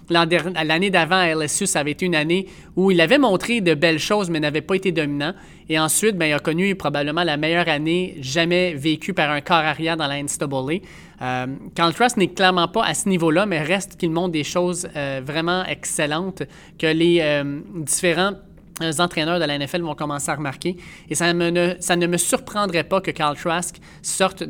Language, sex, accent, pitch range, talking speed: French, male, Canadian, 155-185 Hz, 200 wpm